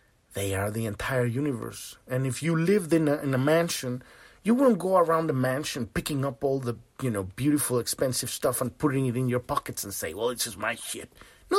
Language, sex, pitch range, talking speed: English, male, 115-160 Hz, 215 wpm